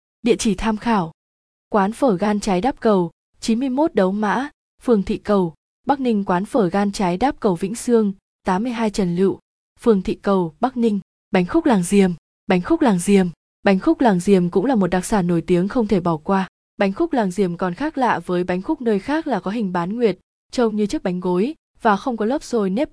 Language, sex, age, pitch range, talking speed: Vietnamese, female, 20-39, 185-235 Hz, 220 wpm